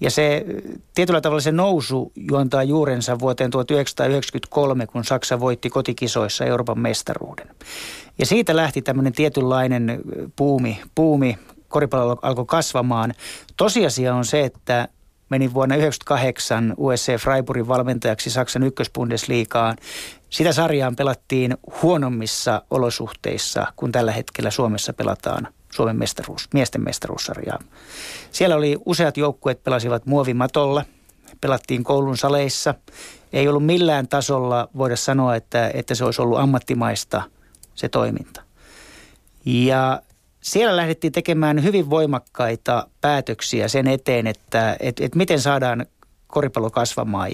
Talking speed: 115 wpm